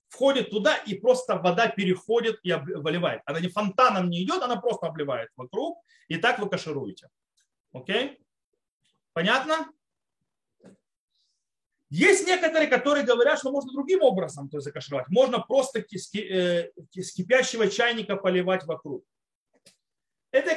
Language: Russian